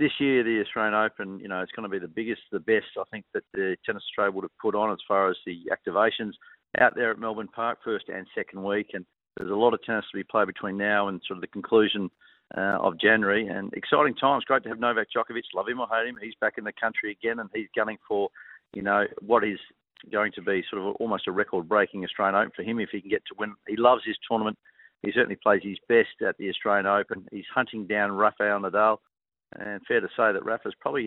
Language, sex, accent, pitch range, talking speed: English, male, Australian, 100-115 Hz, 245 wpm